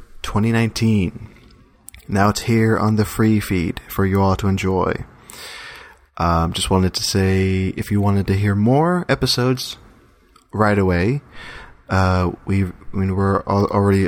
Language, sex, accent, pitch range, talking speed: English, male, American, 90-110 Hz, 145 wpm